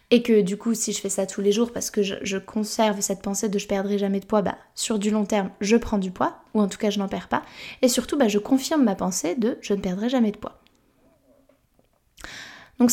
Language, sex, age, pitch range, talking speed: French, female, 20-39, 205-245 Hz, 260 wpm